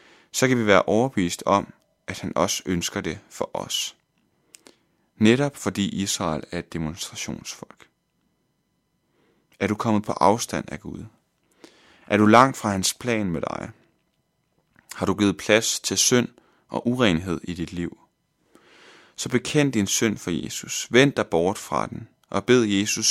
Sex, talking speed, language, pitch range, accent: male, 155 wpm, Danish, 90-115 Hz, native